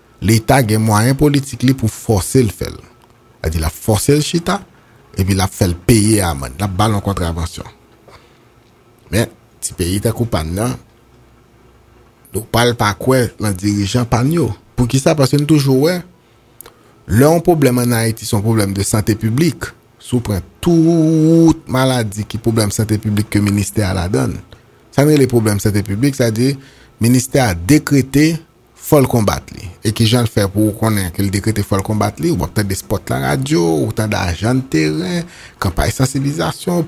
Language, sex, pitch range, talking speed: French, male, 105-135 Hz, 170 wpm